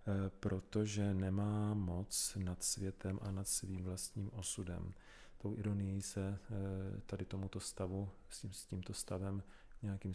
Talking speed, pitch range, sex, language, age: 130 wpm, 95-105 Hz, male, Czech, 40-59